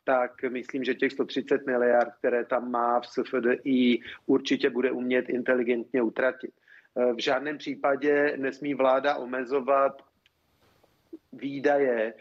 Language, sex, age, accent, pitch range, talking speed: Czech, male, 40-59, native, 130-150 Hz, 115 wpm